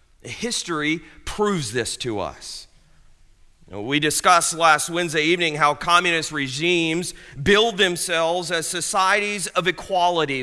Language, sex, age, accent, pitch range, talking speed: English, male, 40-59, American, 135-170 Hz, 110 wpm